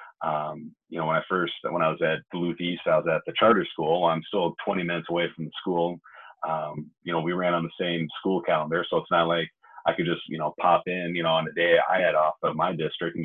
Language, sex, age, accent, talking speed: English, male, 30-49, American, 265 wpm